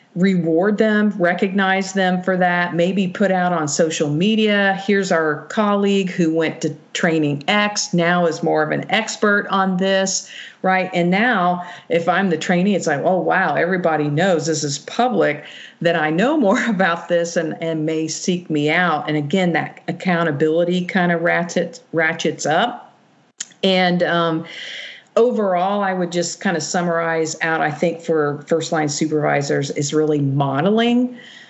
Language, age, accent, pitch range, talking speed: English, 50-69, American, 160-190 Hz, 160 wpm